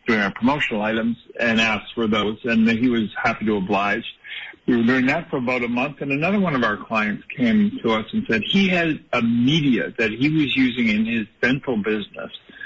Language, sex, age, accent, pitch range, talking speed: English, male, 50-69, American, 110-185 Hz, 210 wpm